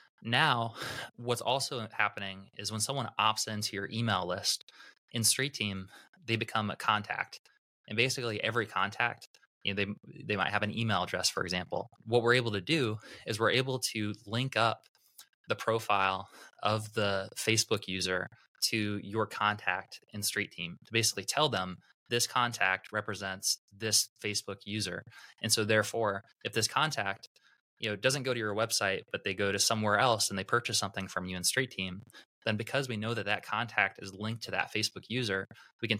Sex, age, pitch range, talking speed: male, 20-39, 100-115 Hz, 185 wpm